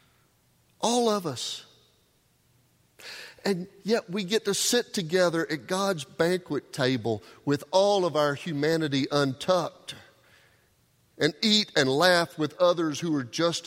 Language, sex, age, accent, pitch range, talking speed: English, male, 50-69, American, 115-155 Hz, 125 wpm